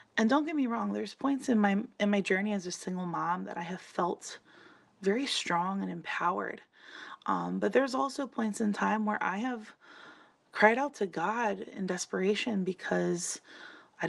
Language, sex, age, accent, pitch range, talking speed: English, female, 20-39, American, 180-215 Hz, 180 wpm